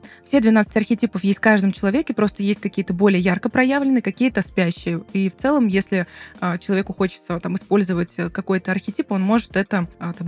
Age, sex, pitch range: 20-39, female, 190-230 Hz